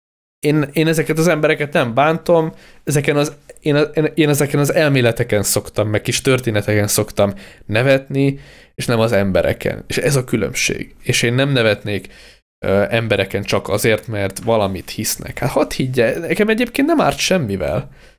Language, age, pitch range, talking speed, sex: Hungarian, 20-39, 105-140 Hz, 160 wpm, male